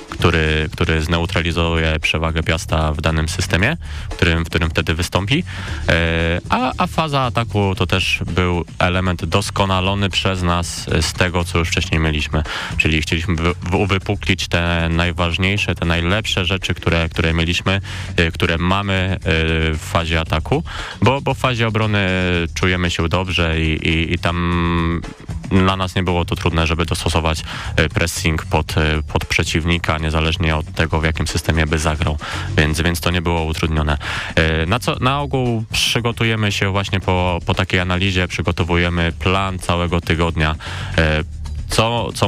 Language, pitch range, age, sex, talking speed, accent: Polish, 85-100 Hz, 20-39, male, 140 wpm, native